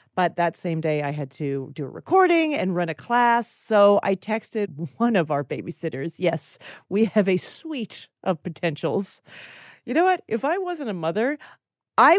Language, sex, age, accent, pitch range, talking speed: English, female, 40-59, American, 165-245 Hz, 180 wpm